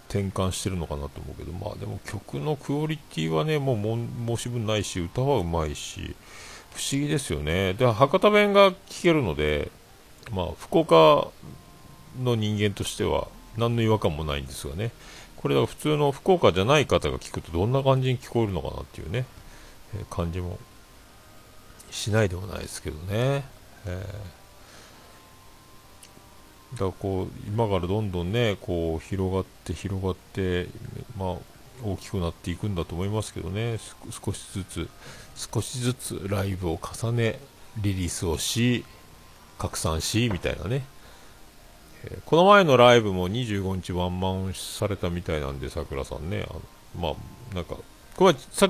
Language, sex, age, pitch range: Japanese, male, 50-69, 85-120 Hz